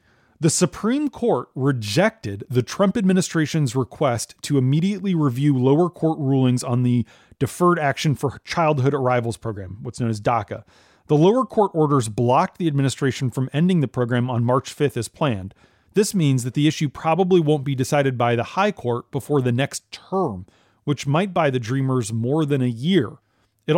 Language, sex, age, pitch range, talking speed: English, male, 30-49, 120-165 Hz, 175 wpm